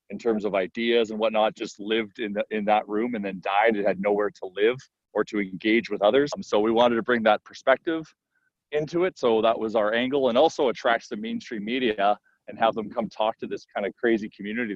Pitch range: 100-115 Hz